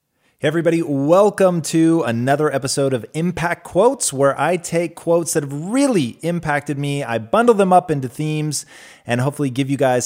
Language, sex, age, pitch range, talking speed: English, male, 30-49, 120-175 Hz, 175 wpm